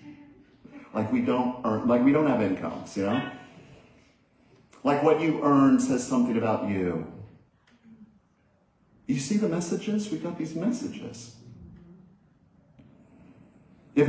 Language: English